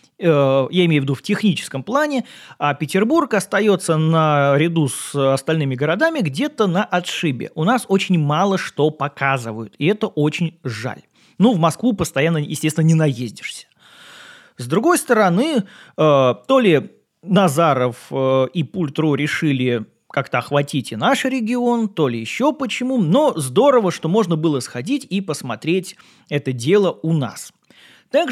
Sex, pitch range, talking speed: male, 145-225 Hz, 140 wpm